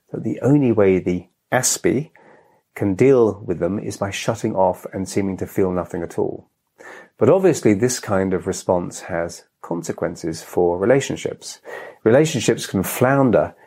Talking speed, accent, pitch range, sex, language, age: 150 wpm, British, 90-120 Hz, male, English, 40-59